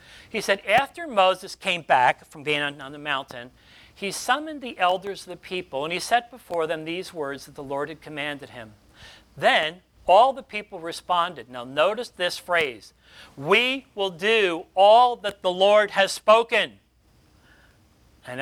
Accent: American